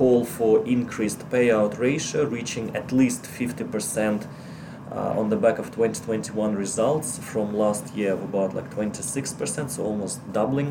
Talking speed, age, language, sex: 145 wpm, 20-39, English, male